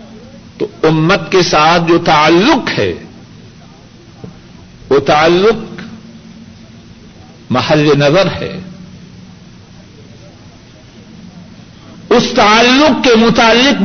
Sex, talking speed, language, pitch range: male, 65 wpm, Urdu, 165-225 Hz